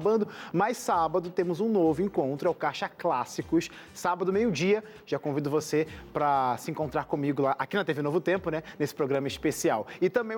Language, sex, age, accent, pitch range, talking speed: Portuguese, male, 20-39, Brazilian, 155-200 Hz, 180 wpm